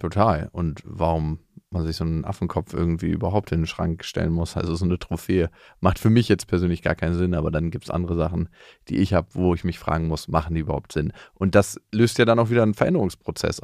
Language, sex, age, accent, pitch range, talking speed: German, male, 30-49, German, 90-105 Hz, 240 wpm